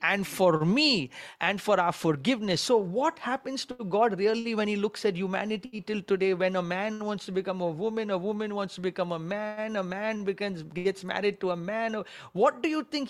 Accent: Indian